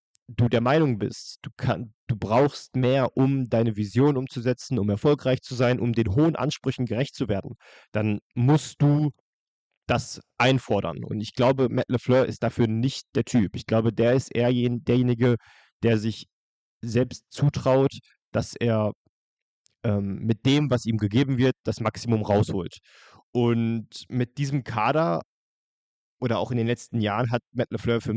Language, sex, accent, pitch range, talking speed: German, male, German, 110-130 Hz, 160 wpm